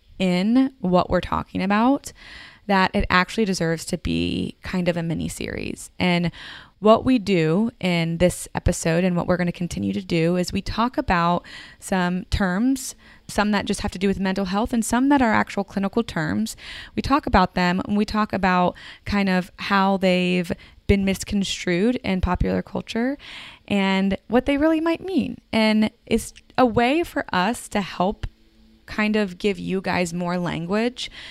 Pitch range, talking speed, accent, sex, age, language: 175-215 Hz, 175 wpm, American, female, 20-39, English